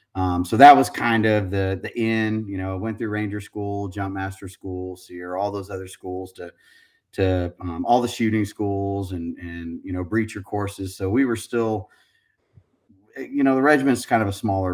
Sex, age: male, 30-49